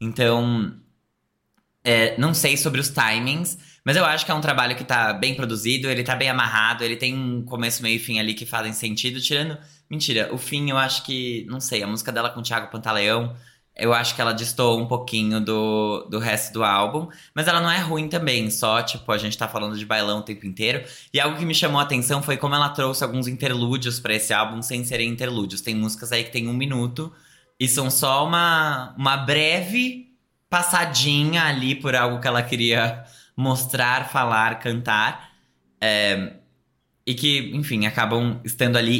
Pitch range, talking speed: 115-145 Hz, 190 wpm